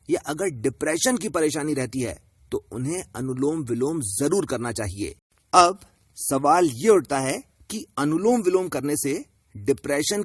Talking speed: 140 wpm